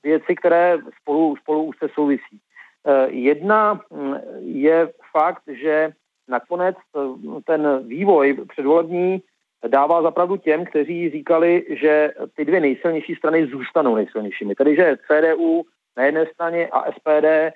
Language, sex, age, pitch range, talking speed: Czech, male, 40-59, 140-165 Hz, 115 wpm